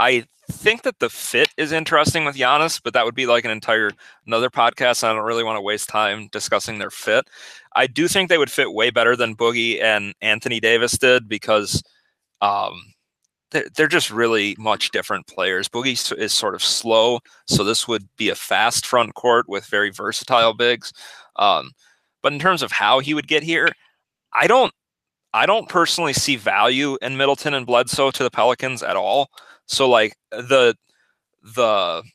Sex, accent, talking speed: male, American, 180 wpm